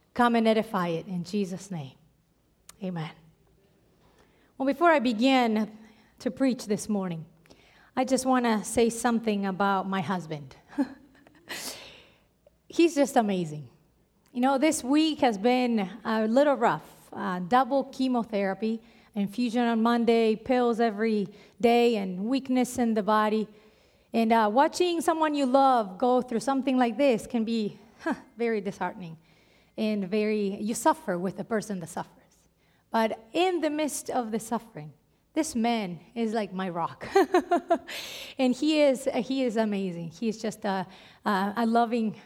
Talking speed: 145 wpm